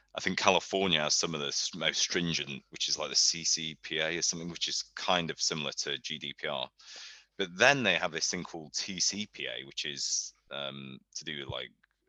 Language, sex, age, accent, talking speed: English, male, 30-49, British, 190 wpm